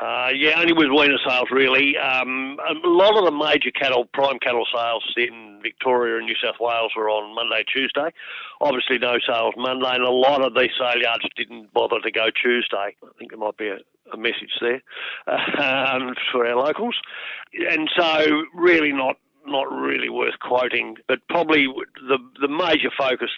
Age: 50-69